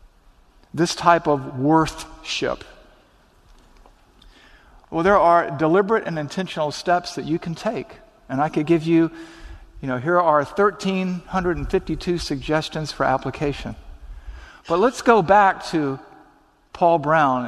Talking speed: 120 wpm